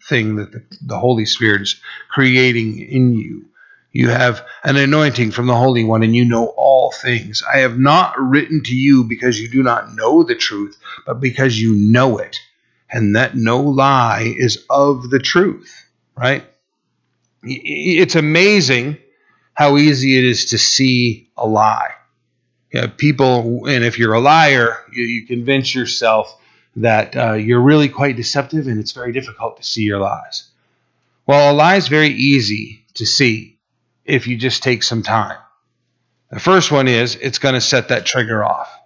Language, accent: English, American